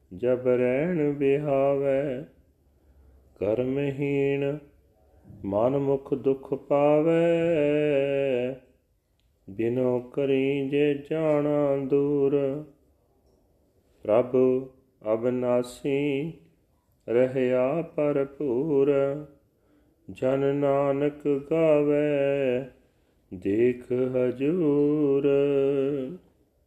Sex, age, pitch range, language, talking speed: male, 40-59, 120-145 Hz, Punjabi, 45 wpm